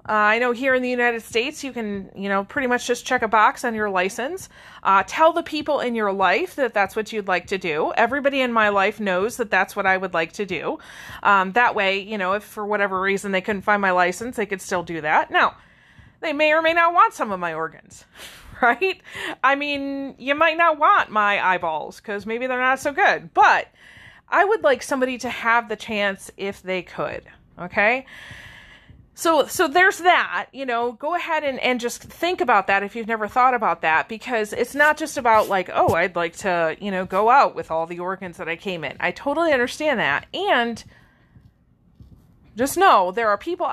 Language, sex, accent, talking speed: English, female, American, 215 wpm